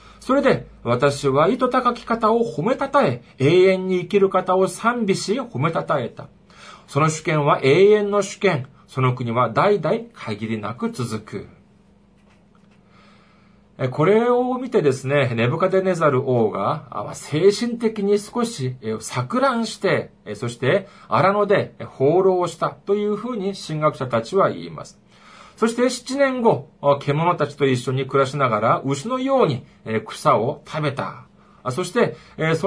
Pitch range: 130-215 Hz